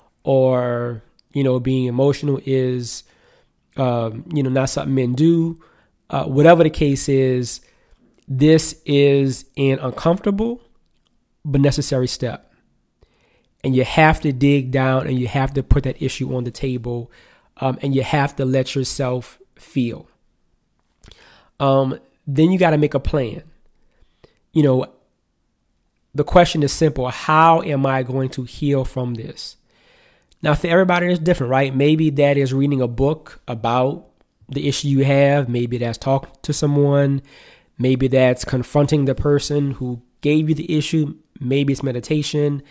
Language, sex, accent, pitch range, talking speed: English, male, American, 130-145 Hz, 150 wpm